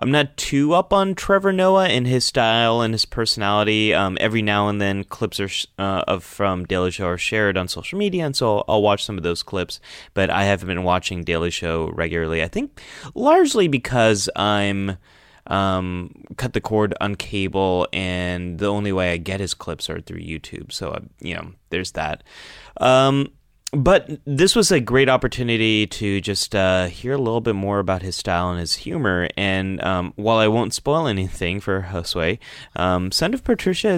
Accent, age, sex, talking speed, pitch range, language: American, 30-49, male, 190 wpm, 90-125 Hz, English